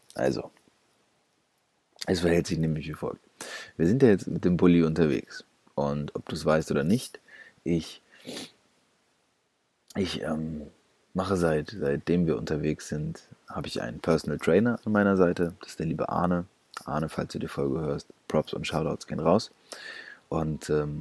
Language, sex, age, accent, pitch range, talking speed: German, male, 30-49, German, 75-90 Hz, 160 wpm